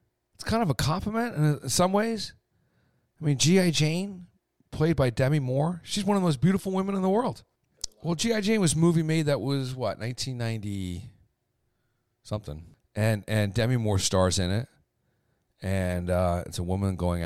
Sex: male